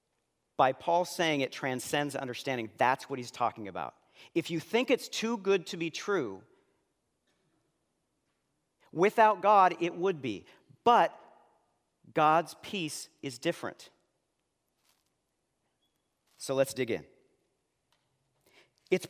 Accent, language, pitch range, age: American, English, 135-195 Hz, 40-59